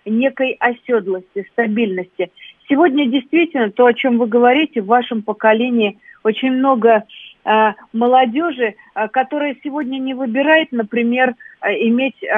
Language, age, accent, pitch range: Russian, 40-59, native, 210-265 Hz